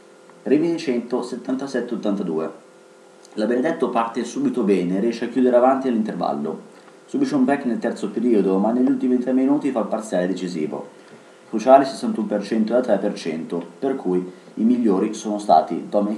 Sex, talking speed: male, 150 wpm